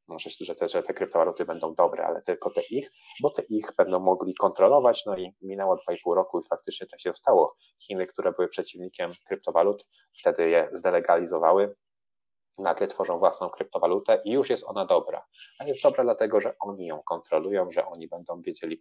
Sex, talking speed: male, 180 wpm